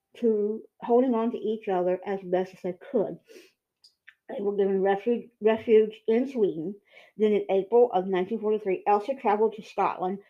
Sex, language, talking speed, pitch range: female, English, 155 wpm, 195-235 Hz